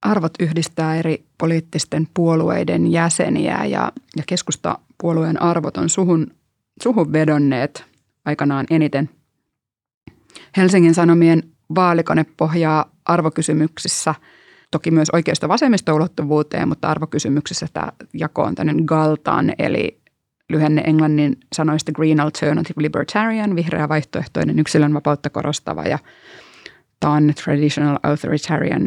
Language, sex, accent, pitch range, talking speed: English, female, Finnish, 150-170 Hz, 100 wpm